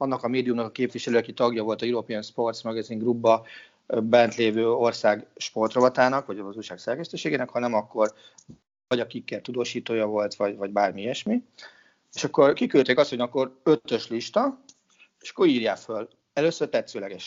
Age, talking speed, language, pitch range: 30-49, 155 wpm, Hungarian, 110-155 Hz